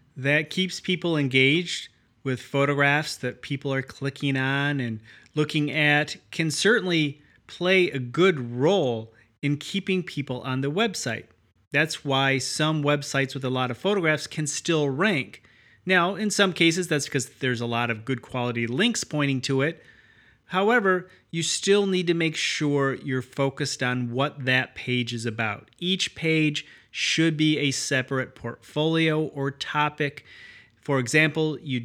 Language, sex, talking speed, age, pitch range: English, male, 155 wpm, 30-49, 130-160 Hz